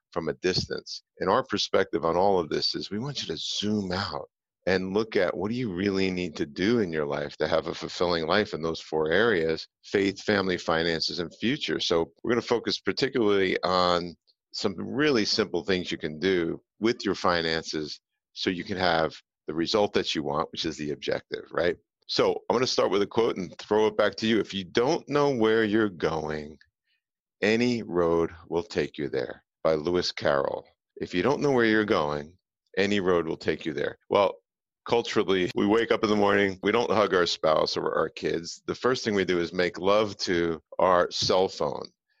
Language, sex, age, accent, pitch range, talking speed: English, male, 50-69, American, 90-130 Hz, 210 wpm